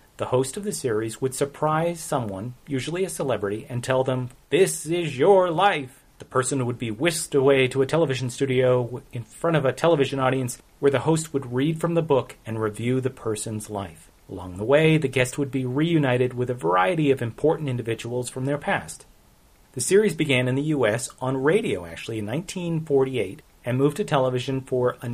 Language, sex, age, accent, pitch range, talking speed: English, male, 30-49, American, 120-145 Hz, 195 wpm